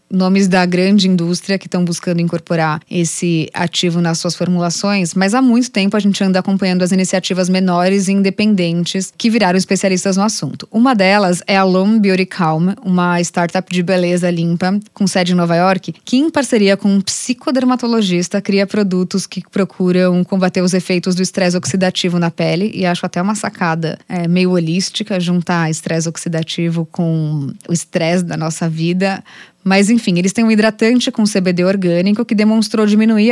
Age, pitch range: 20-39, 175-205 Hz